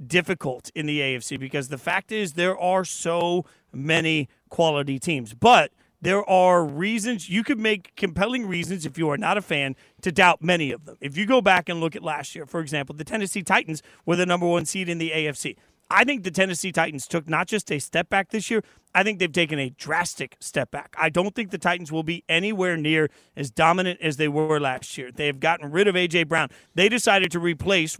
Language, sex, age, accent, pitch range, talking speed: English, male, 40-59, American, 155-190 Hz, 220 wpm